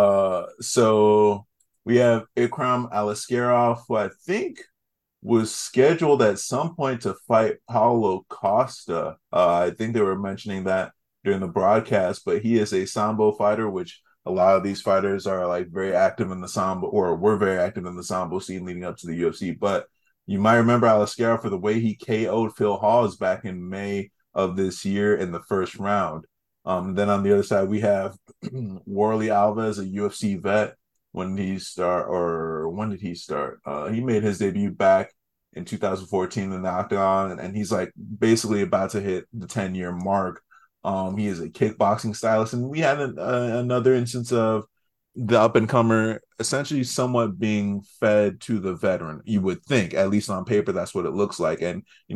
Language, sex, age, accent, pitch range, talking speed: English, male, 30-49, American, 95-110 Hz, 185 wpm